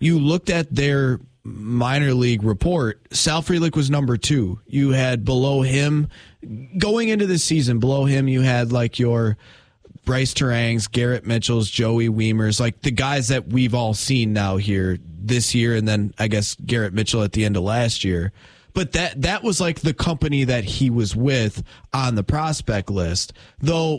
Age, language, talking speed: 20-39, English, 180 wpm